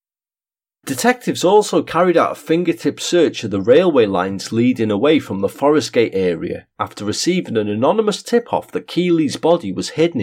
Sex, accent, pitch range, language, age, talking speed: male, British, 110-175 Hz, English, 40-59, 165 wpm